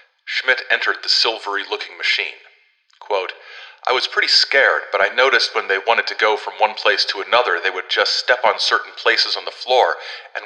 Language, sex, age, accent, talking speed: English, male, 40-59, American, 195 wpm